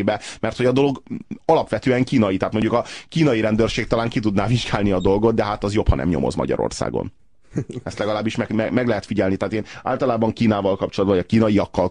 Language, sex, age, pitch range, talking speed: Hungarian, male, 30-49, 95-115 Hz, 200 wpm